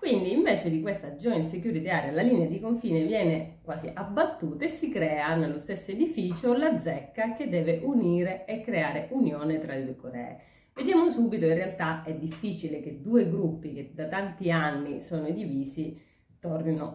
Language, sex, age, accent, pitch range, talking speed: Italian, female, 30-49, native, 150-195 Hz, 170 wpm